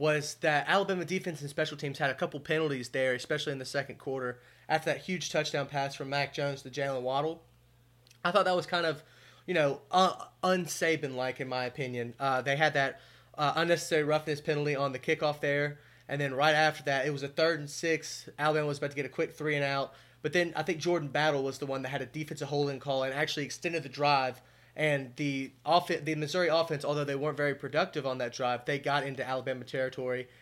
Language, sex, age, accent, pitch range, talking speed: English, male, 20-39, American, 135-155 Hz, 225 wpm